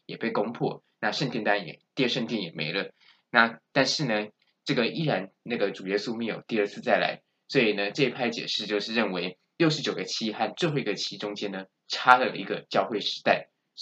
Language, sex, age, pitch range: Chinese, male, 20-39, 105-135 Hz